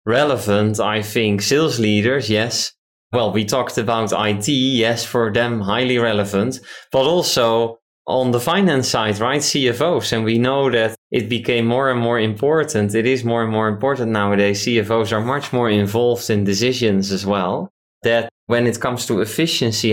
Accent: Dutch